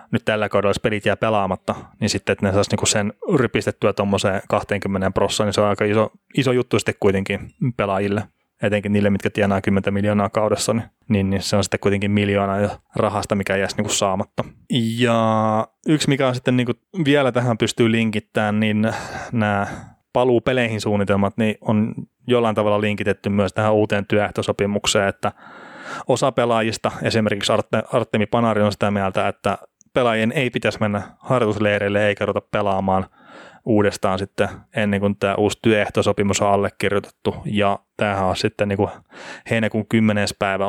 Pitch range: 100-110 Hz